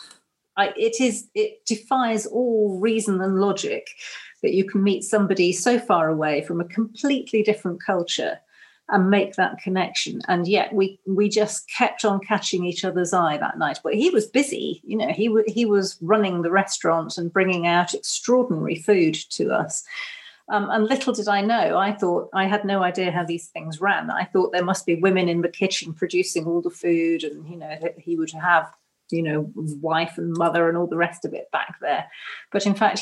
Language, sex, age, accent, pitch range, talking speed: English, female, 40-59, British, 175-215 Hz, 195 wpm